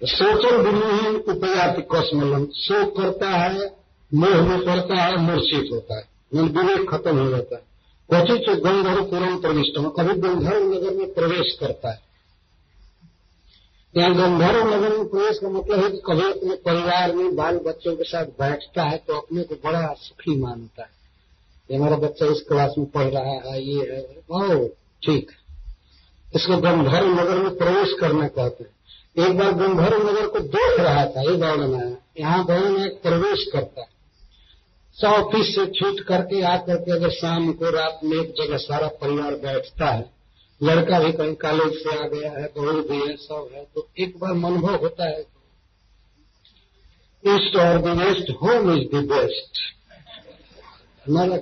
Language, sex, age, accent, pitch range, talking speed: Hindi, male, 50-69, native, 140-190 Hz, 170 wpm